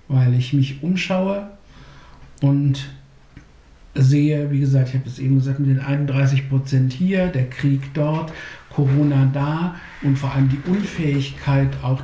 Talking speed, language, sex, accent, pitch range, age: 145 wpm, English, male, German, 135-150 Hz, 60-79